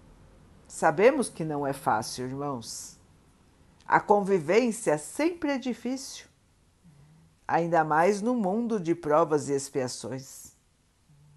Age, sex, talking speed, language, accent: 60-79, female, 100 wpm, Portuguese, Brazilian